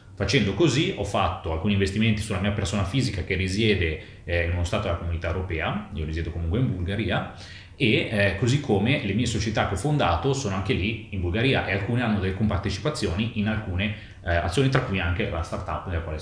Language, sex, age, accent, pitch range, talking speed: Italian, male, 30-49, native, 90-105 Hz, 205 wpm